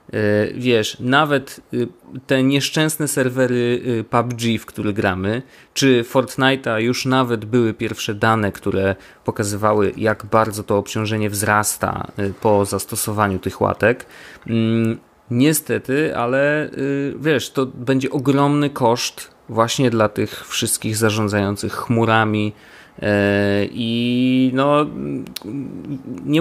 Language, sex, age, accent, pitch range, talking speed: Polish, male, 30-49, native, 105-130 Hz, 95 wpm